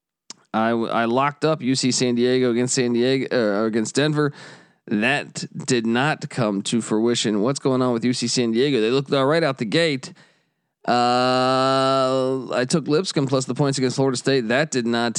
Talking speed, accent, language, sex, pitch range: 180 wpm, American, English, male, 120-140 Hz